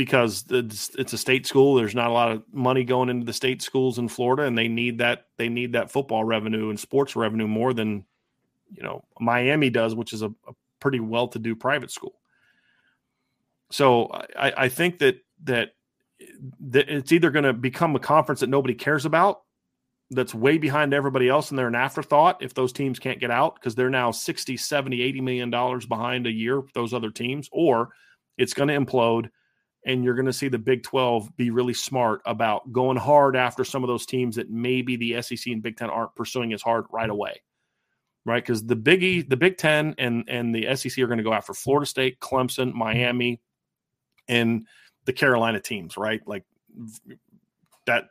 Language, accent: English, American